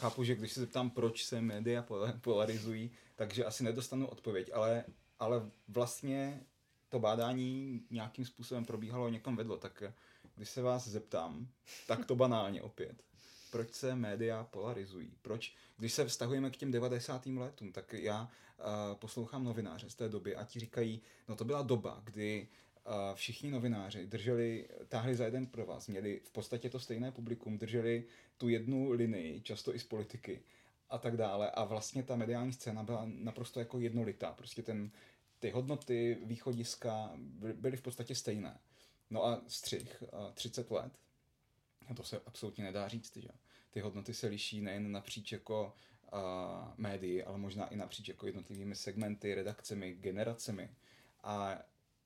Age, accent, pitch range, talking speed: 30-49, native, 110-125 Hz, 155 wpm